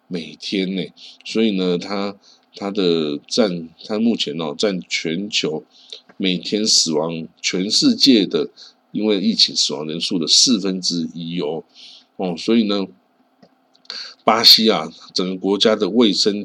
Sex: male